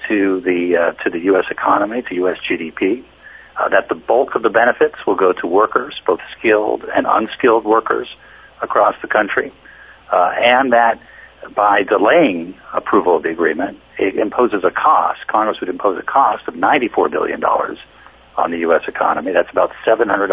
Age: 50-69